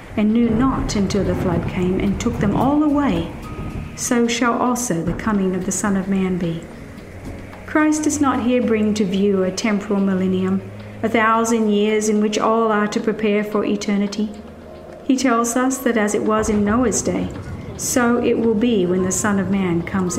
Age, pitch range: 50-69, 190-240 Hz